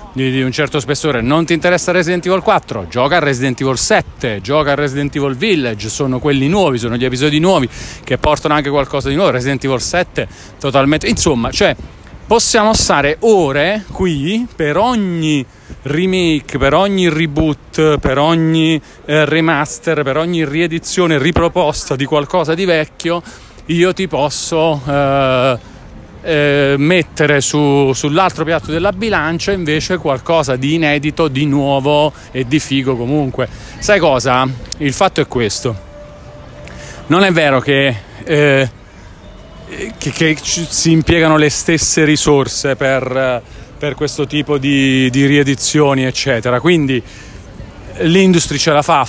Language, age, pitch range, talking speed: Italian, 40-59, 130-160 Hz, 140 wpm